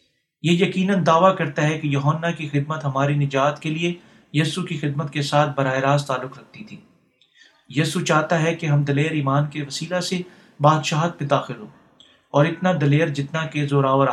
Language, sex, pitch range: Urdu, male, 145-170 Hz